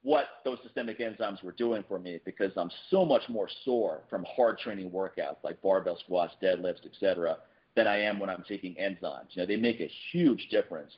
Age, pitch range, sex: 40-59, 95-125 Hz, male